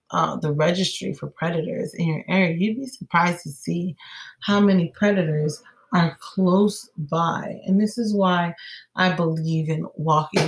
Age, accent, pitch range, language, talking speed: 20-39, American, 160-200 Hz, English, 155 wpm